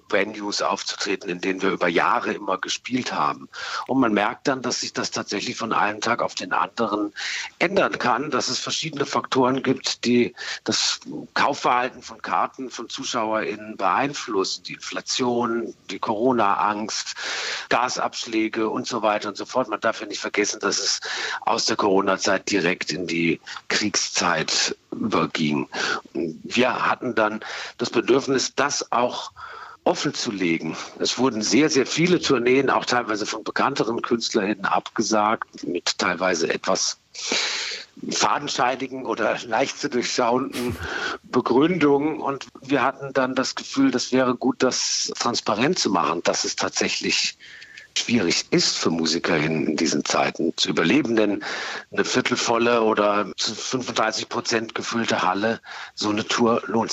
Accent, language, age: German, German, 50-69